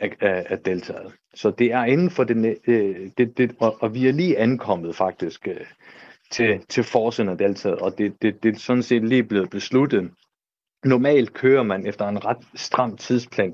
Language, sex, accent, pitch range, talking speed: Danish, male, native, 95-120 Hz, 185 wpm